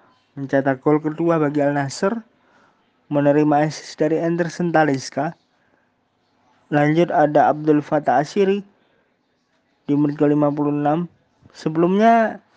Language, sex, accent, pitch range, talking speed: Indonesian, male, native, 145-180 Hz, 90 wpm